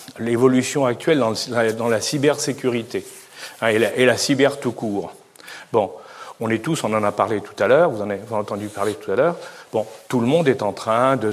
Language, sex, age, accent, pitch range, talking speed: French, male, 40-59, French, 115-145 Hz, 235 wpm